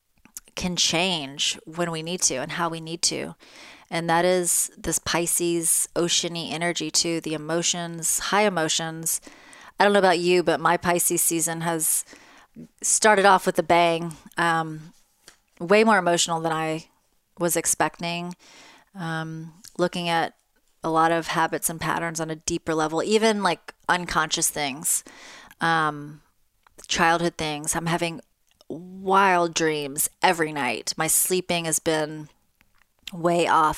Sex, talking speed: female, 140 wpm